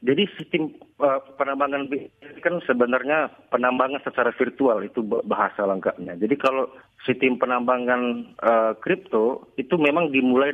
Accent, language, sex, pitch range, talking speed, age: native, Indonesian, male, 120-145 Hz, 115 wpm, 40-59